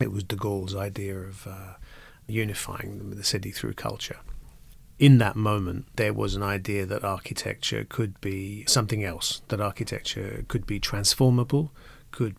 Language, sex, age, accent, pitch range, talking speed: English, male, 40-59, British, 100-125 Hz, 150 wpm